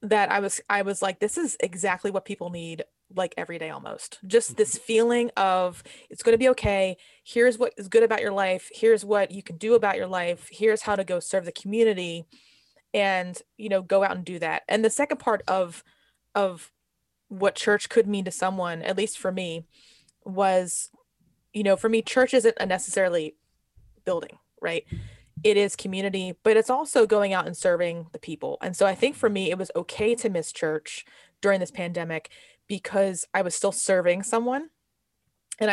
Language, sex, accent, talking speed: English, female, American, 195 wpm